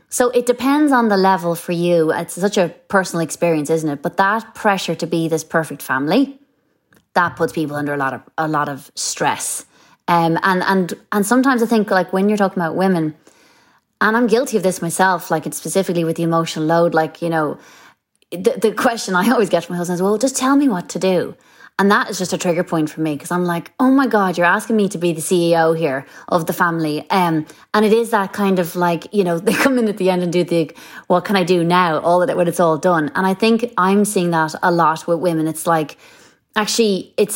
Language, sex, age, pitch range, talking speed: English, female, 20-39, 165-205 Hz, 245 wpm